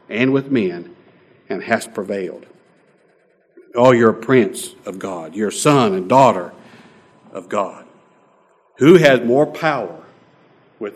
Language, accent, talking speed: English, American, 130 wpm